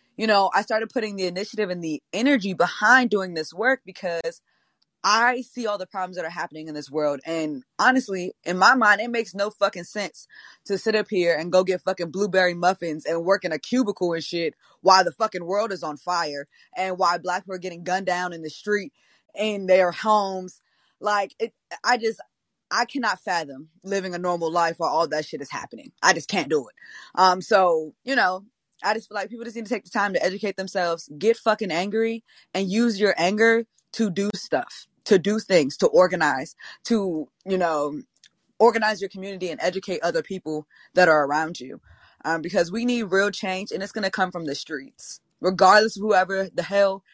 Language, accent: English, American